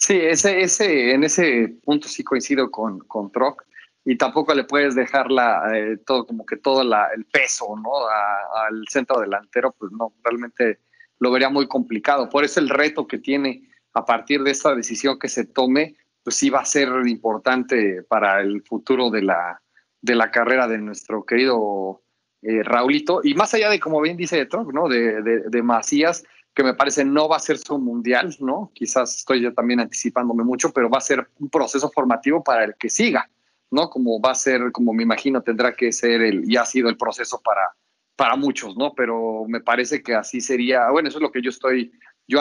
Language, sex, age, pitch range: Spanish, male, 30-49, 115-145 Hz